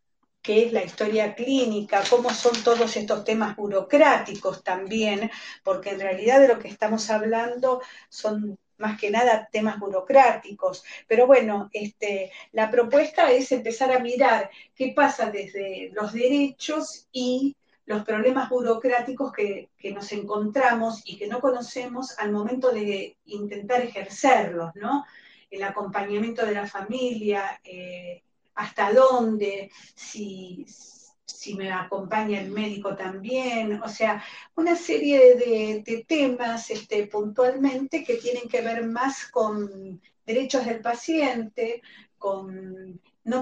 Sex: female